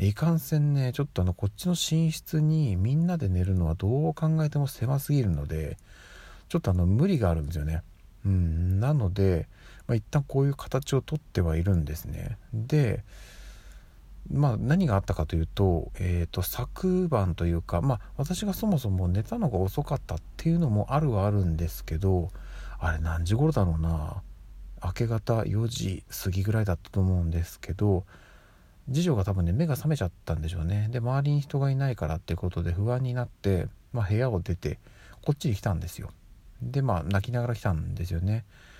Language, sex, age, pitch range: Japanese, male, 40-59, 90-125 Hz